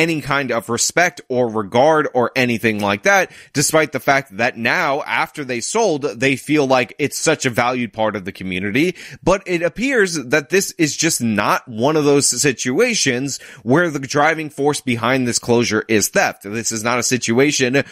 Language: English